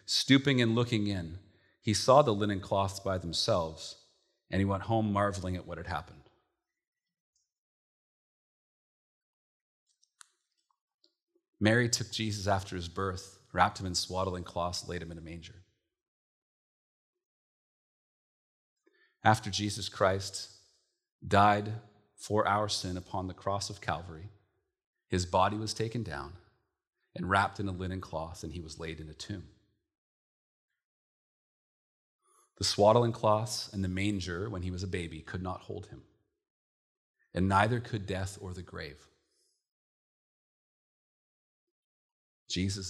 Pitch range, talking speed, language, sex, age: 90-105 Hz, 125 wpm, English, male, 40-59